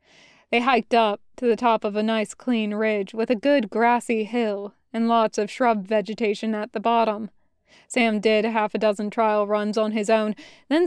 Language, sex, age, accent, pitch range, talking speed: English, female, 20-39, American, 215-245 Hz, 195 wpm